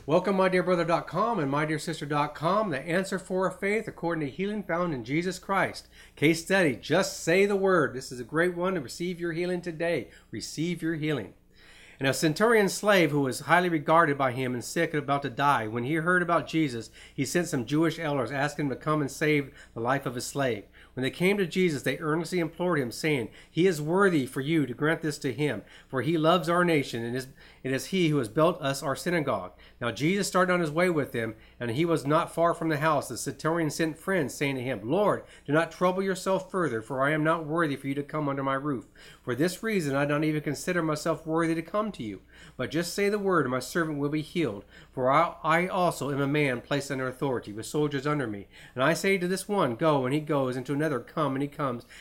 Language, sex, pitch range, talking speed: English, male, 135-170 Hz, 240 wpm